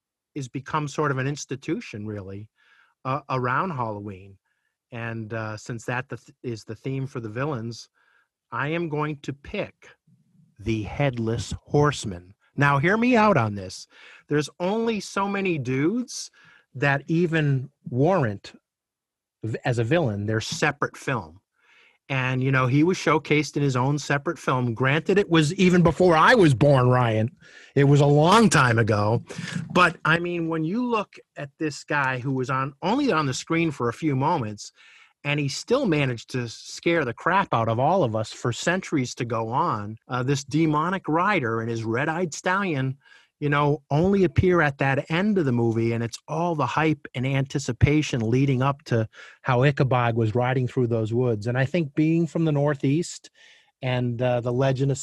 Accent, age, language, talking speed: American, 50-69, English, 175 wpm